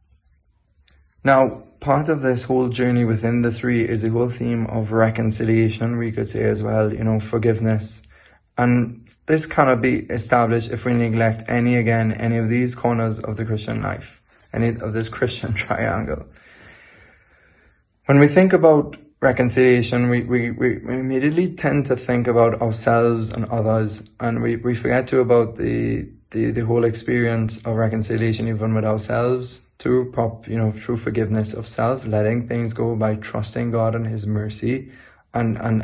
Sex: male